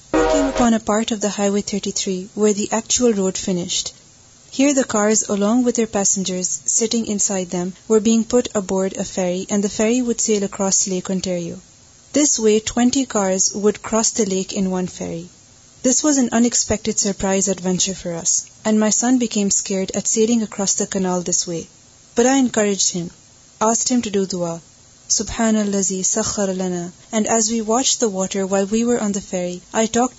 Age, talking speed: 30-49, 185 wpm